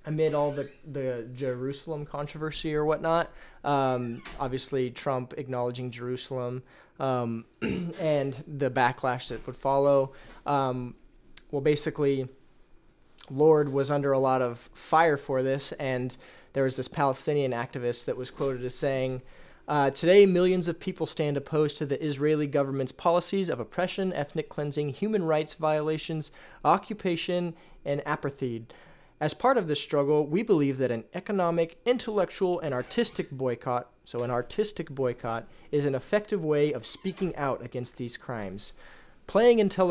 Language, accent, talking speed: English, American, 145 wpm